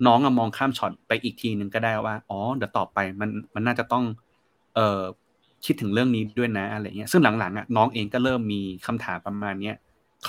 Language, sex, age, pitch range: Thai, male, 30-49, 105-125 Hz